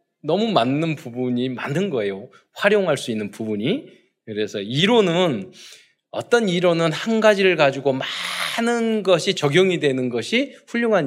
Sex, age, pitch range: male, 20-39, 120-185 Hz